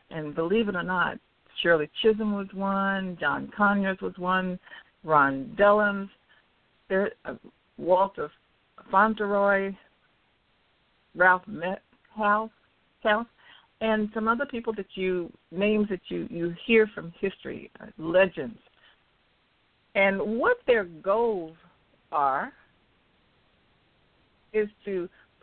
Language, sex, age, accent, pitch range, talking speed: English, female, 60-79, American, 170-215 Hz, 95 wpm